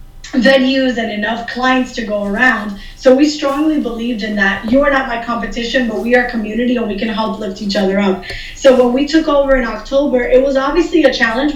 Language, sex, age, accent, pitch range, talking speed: English, female, 20-39, American, 225-265 Hz, 220 wpm